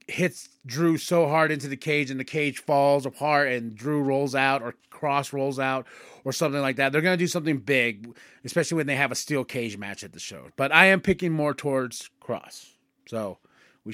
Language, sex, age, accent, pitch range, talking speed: English, male, 30-49, American, 140-180 Hz, 215 wpm